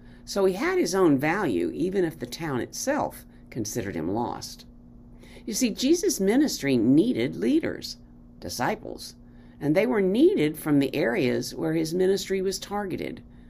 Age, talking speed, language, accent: 50-69, 145 wpm, English, American